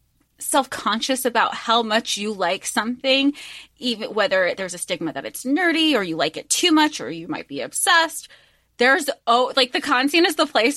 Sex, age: female, 20-39